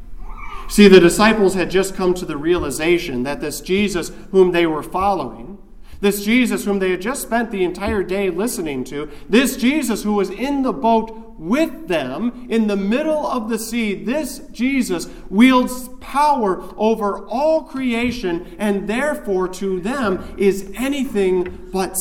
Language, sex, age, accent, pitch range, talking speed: English, male, 40-59, American, 180-235 Hz, 155 wpm